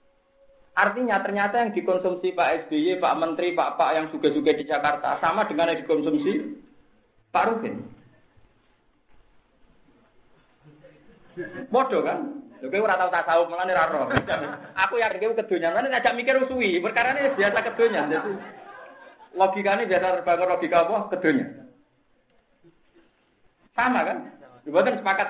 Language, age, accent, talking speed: Indonesian, 40-59, native, 105 wpm